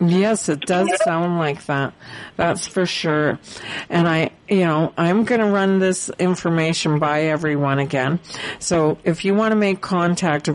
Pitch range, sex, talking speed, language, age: 160-185 Hz, female, 165 wpm, English, 50-69